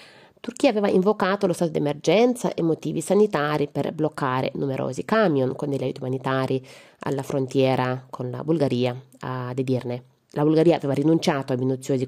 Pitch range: 130-165 Hz